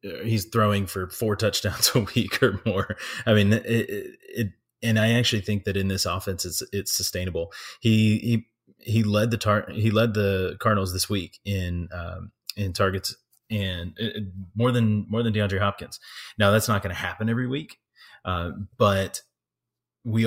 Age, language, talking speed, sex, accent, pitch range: 30-49, English, 170 wpm, male, American, 90-105 Hz